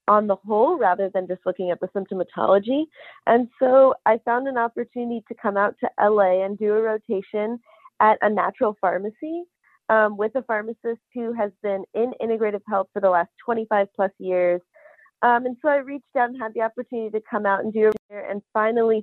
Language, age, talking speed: English, 30-49, 200 wpm